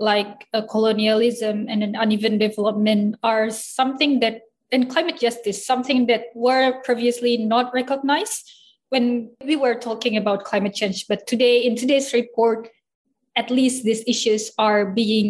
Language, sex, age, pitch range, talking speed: Indonesian, female, 20-39, 215-250 Hz, 140 wpm